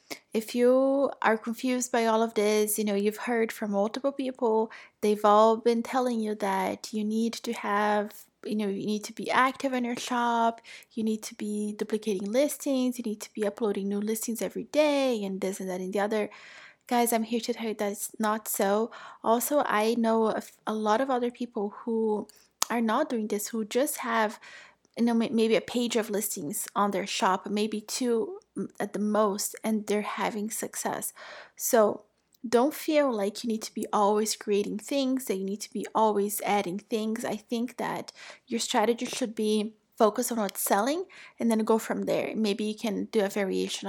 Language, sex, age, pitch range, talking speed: English, female, 20-39, 210-240 Hz, 195 wpm